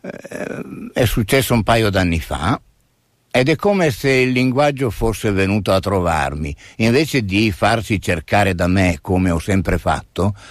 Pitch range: 90-125 Hz